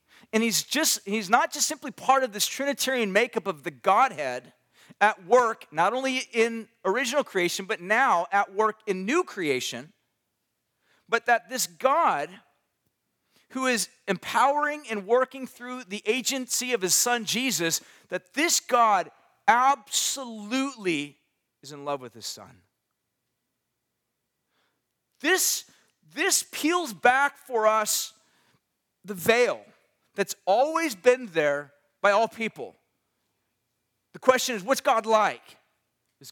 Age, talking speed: 40-59, 125 wpm